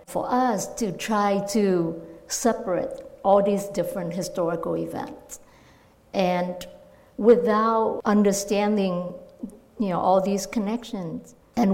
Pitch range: 180-220 Hz